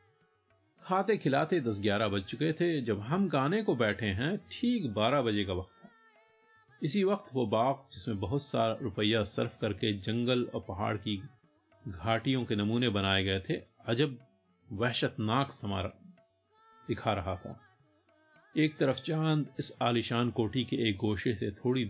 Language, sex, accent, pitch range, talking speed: Hindi, male, native, 105-140 Hz, 155 wpm